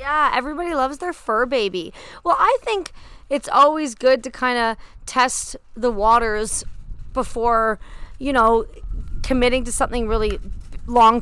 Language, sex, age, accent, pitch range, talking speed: English, female, 30-49, American, 205-245 Hz, 140 wpm